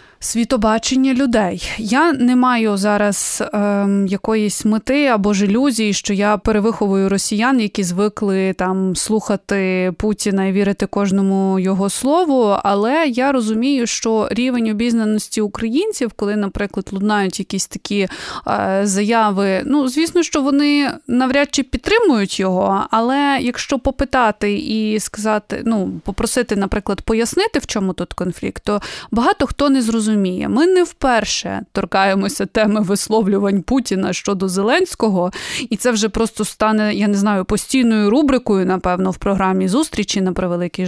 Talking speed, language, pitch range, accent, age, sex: 135 wpm, Ukrainian, 195-235 Hz, native, 20-39, female